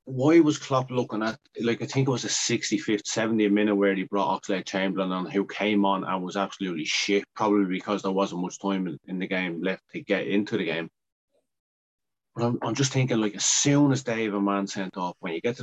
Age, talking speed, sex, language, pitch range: 30-49, 230 wpm, male, English, 95-105 Hz